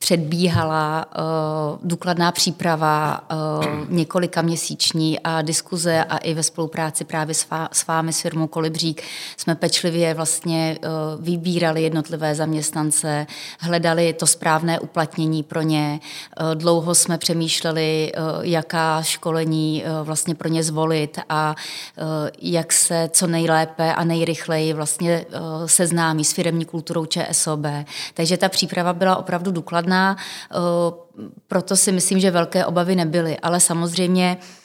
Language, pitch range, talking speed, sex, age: Czech, 160-175 Hz, 120 wpm, female, 30-49